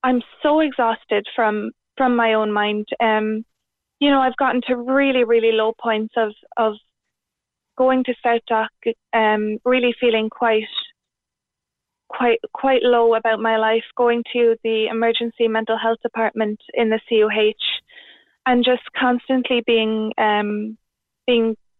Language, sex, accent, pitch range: English, female, Irish, 220-250 Hz